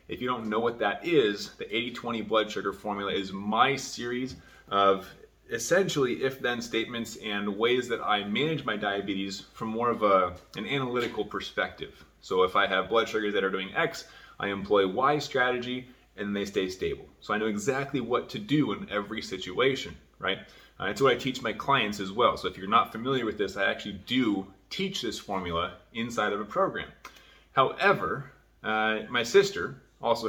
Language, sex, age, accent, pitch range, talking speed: English, male, 30-49, American, 100-130 Hz, 185 wpm